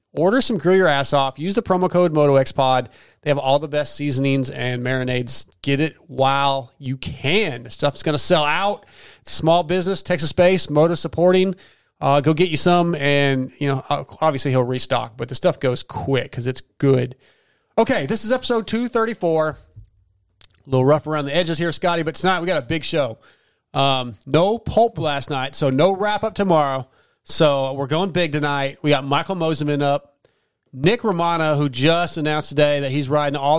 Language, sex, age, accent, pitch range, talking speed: English, male, 30-49, American, 135-175 Hz, 190 wpm